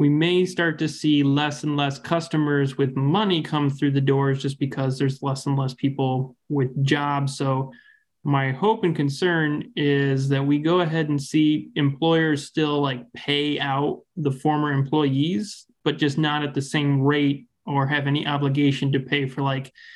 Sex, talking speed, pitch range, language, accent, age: male, 175 wpm, 140-155 Hz, English, American, 20-39